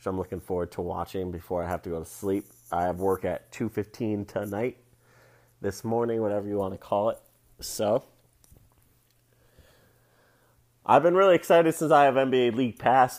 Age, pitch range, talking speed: 30-49, 95-115 Hz, 175 wpm